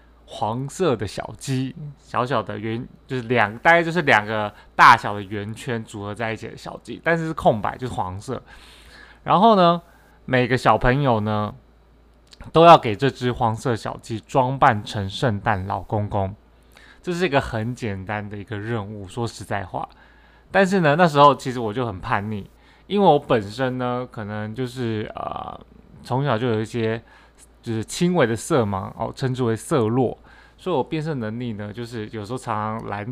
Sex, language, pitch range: male, Chinese, 105-130 Hz